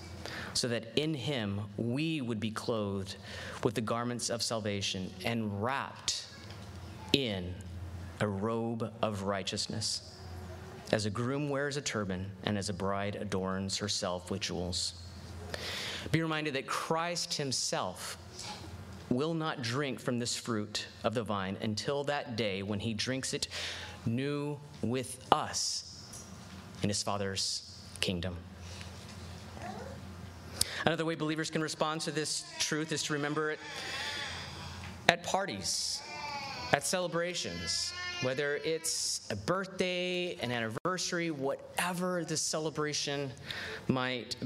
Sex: male